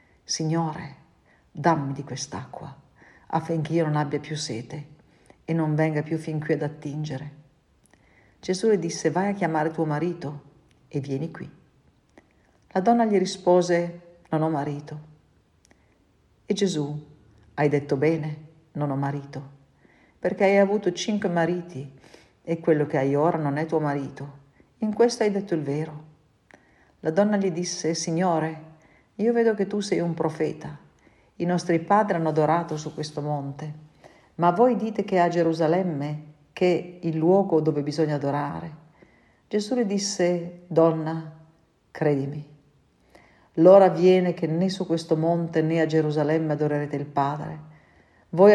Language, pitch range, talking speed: Italian, 145-175 Hz, 145 wpm